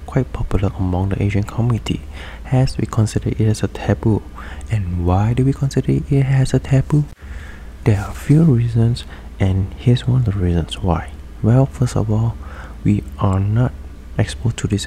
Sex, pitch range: male, 75-110 Hz